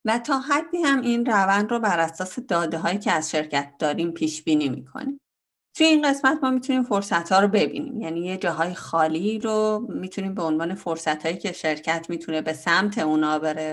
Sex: female